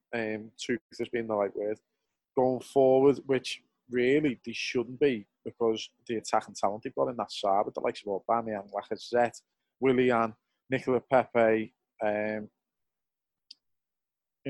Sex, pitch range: male, 110-130 Hz